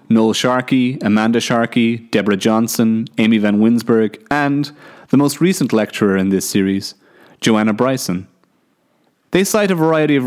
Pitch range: 105-135 Hz